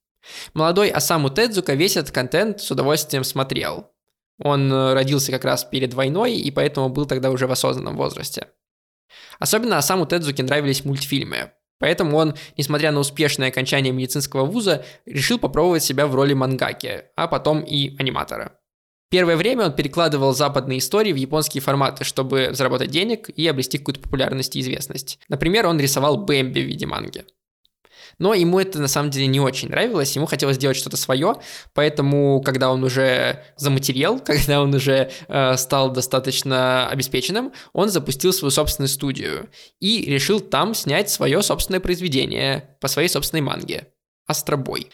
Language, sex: Russian, male